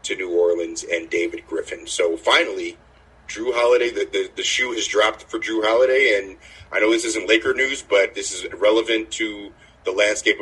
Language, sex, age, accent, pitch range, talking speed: English, male, 30-49, American, 340-440 Hz, 190 wpm